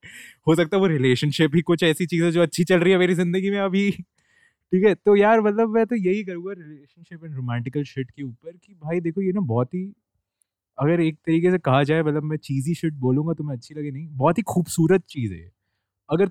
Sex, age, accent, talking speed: male, 20-39, native, 120 wpm